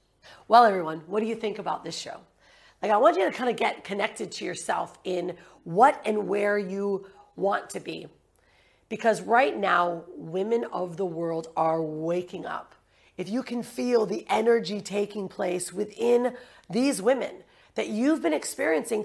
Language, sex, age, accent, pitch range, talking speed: English, female, 40-59, American, 185-240 Hz, 165 wpm